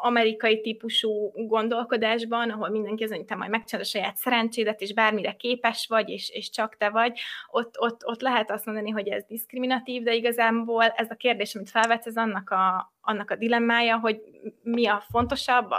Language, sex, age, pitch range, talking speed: Hungarian, female, 20-39, 210-235 Hz, 180 wpm